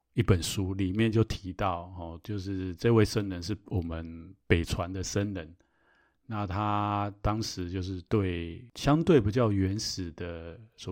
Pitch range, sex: 90-115 Hz, male